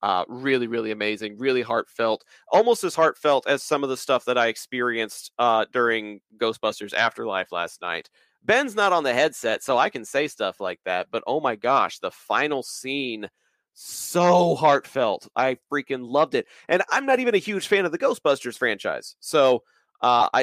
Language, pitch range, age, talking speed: English, 120-150 Hz, 30-49, 180 wpm